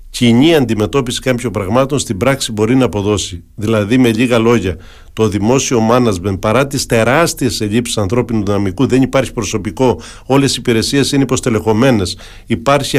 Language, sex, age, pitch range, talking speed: Greek, male, 50-69, 110-135 Hz, 145 wpm